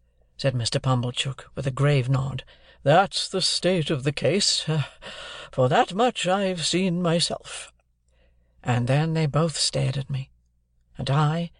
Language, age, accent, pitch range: Korean, 60-79, British, 125-150 Hz